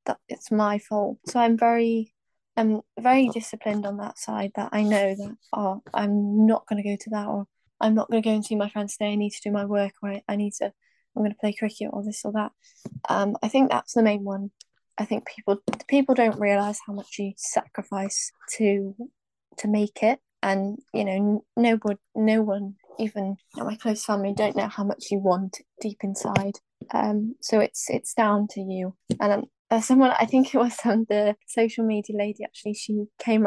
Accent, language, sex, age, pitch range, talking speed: British, English, female, 10-29, 200-225 Hz, 210 wpm